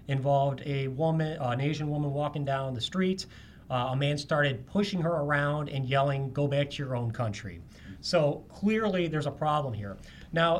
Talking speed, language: 180 wpm, English